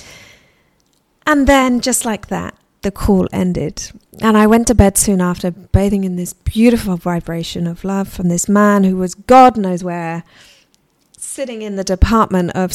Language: English